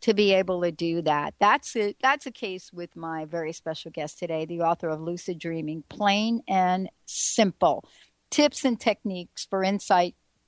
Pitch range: 175-245 Hz